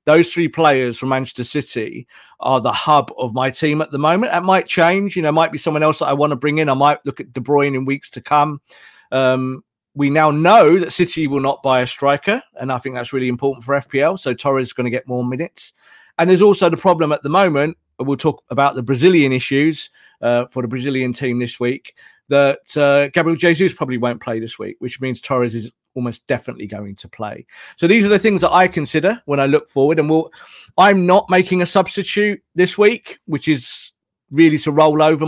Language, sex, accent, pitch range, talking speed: English, male, British, 125-165 Hz, 230 wpm